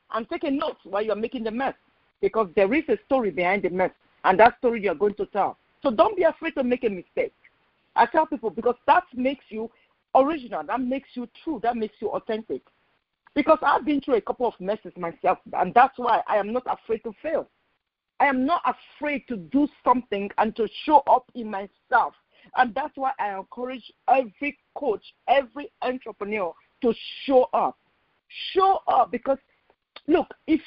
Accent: Nigerian